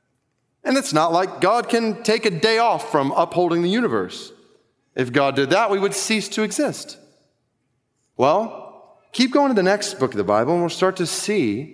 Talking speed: 195 wpm